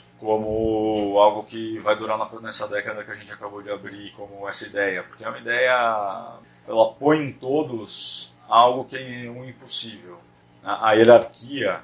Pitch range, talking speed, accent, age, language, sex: 100-120 Hz, 160 wpm, Brazilian, 20-39, Portuguese, male